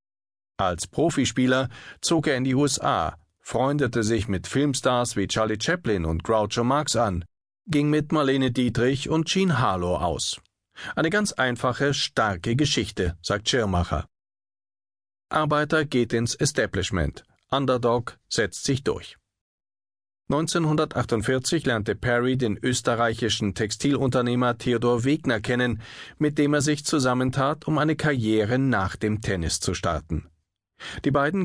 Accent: German